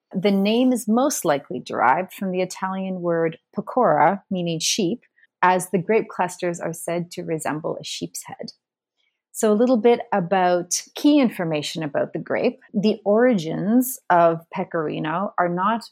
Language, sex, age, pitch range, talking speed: English, female, 30-49, 170-215 Hz, 150 wpm